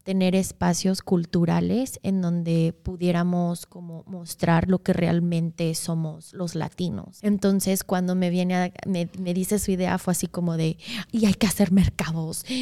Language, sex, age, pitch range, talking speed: English, female, 20-39, 170-190 Hz, 150 wpm